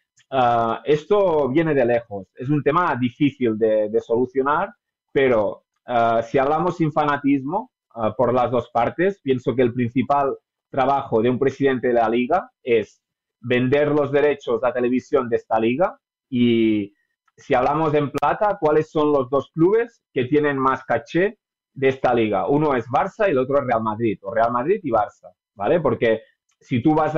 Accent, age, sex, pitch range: Spanish, 30-49, male, 120-150 Hz